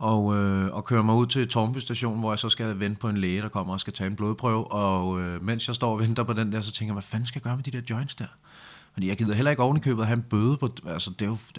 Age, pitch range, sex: 30-49, 110-145 Hz, male